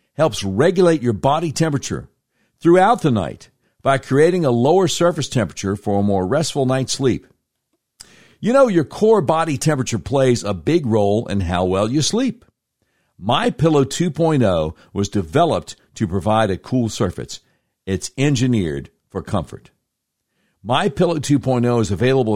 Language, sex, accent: English, male, American